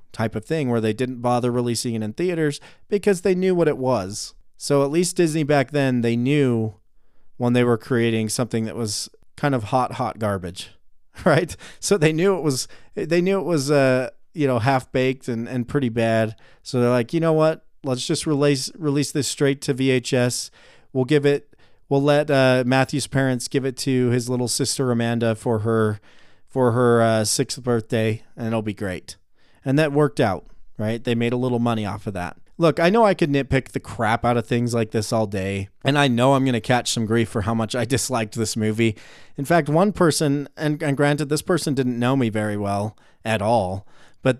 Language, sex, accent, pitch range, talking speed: English, male, American, 115-140 Hz, 215 wpm